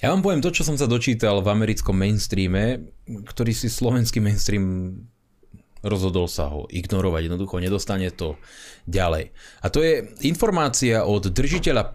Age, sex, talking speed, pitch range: 20-39, male, 145 wpm, 90-110 Hz